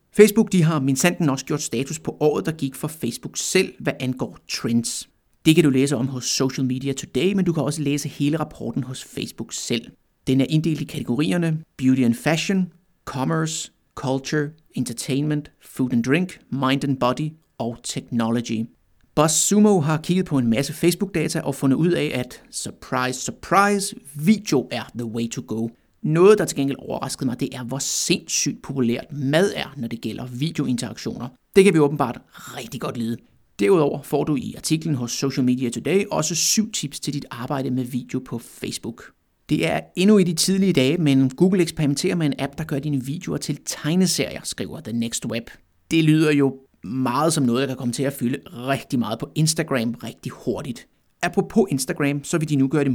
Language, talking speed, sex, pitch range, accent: Danish, 190 wpm, male, 125-160 Hz, native